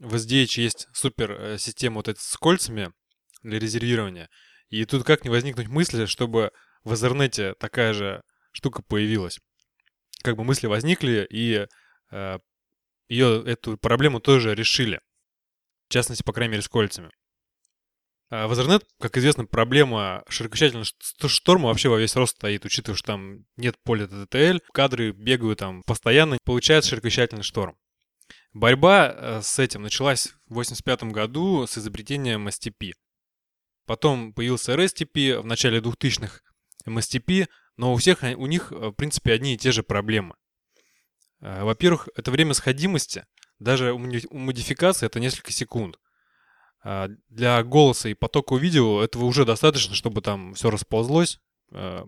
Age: 20-39